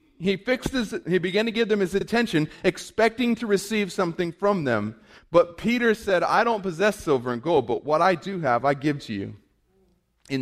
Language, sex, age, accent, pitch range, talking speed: English, male, 30-49, American, 120-190 Hz, 200 wpm